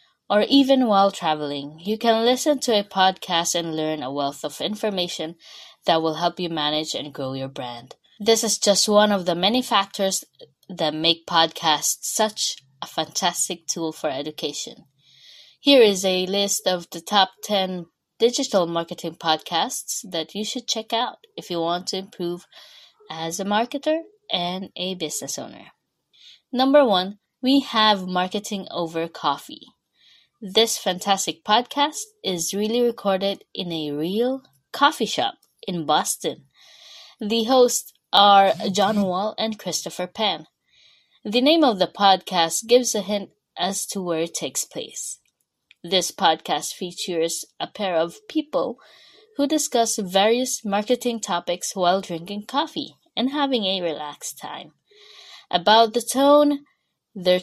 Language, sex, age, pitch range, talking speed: English, female, 20-39, 170-240 Hz, 140 wpm